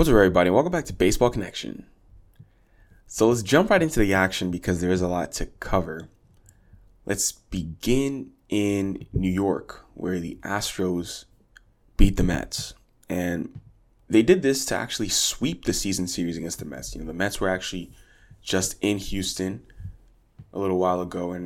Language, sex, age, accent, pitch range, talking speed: English, male, 20-39, American, 90-105 Hz, 170 wpm